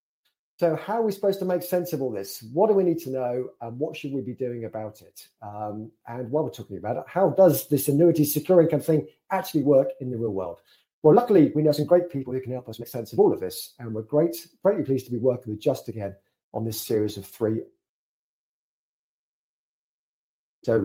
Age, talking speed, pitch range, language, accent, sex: 40-59, 225 wpm, 115-155 Hz, English, British, male